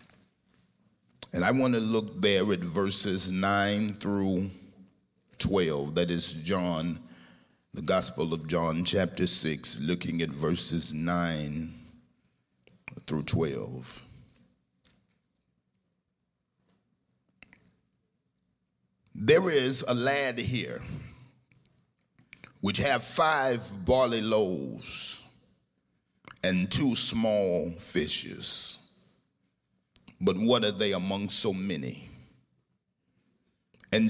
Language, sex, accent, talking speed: English, male, American, 85 wpm